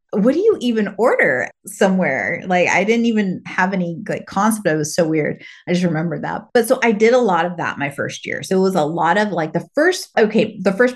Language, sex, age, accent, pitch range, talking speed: English, female, 30-49, American, 170-205 Hz, 245 wpm